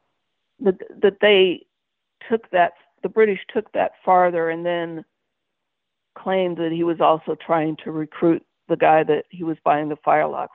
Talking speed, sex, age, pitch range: 155 wpm, female, 50-69, 155-185 Hz